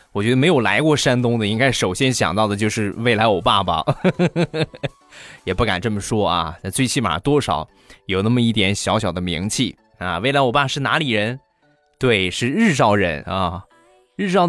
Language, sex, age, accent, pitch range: Chinese, male, 20-39, native, 110-140 Hz